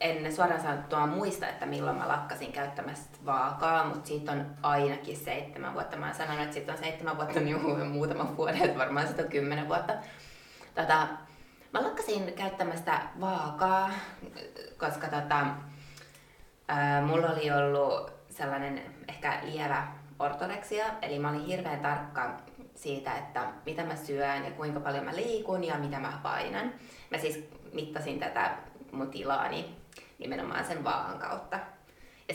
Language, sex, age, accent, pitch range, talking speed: English, female, 20-39, Finnish, 145-175 Hz, 145 wpm